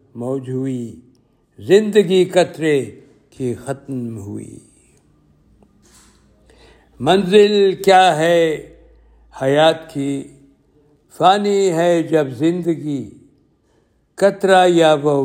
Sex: male